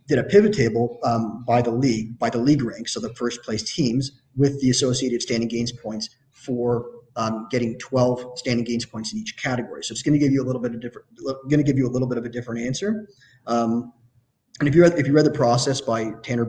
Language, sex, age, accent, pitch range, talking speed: English, male, 30-49, American, 120-135 Hz, 245 wpm